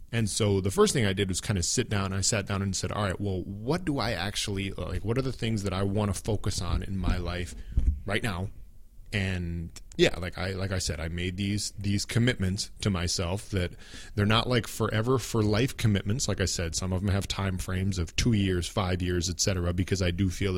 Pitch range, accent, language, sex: 90-110 Hz, American, English, male